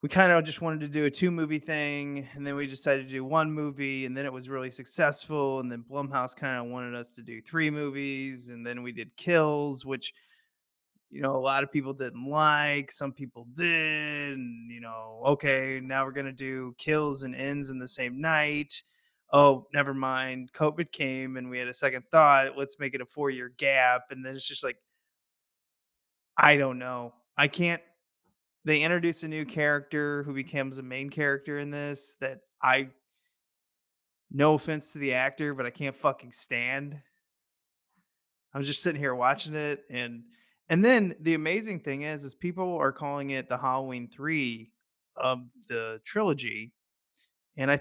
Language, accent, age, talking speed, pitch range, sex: English, American, 20-39, 185 wpm, 130-150 Hz, male